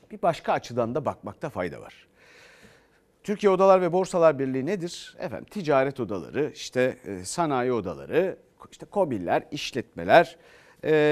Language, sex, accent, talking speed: Turkish, male, native, 125 wpm